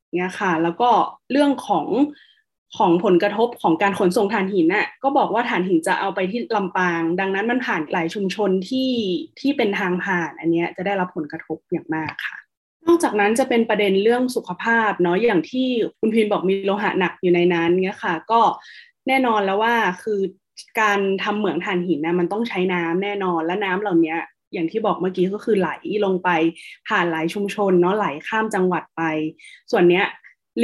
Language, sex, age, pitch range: Thai, female, 20-39, 180-230 Hz